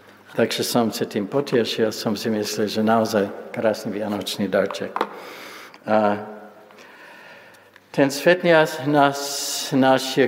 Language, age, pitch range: Slovak, 60-79, 110-125 Hz